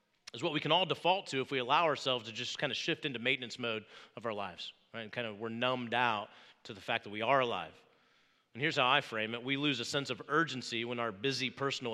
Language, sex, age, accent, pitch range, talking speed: English, male, 30-49, American, 115-150 Hz, 260 wpm